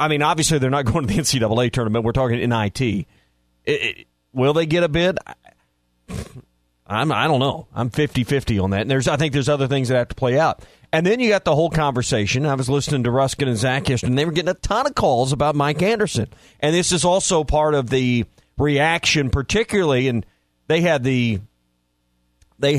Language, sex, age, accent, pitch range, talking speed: English, male, 40-59, American, 110-165 Hz, 210 wpm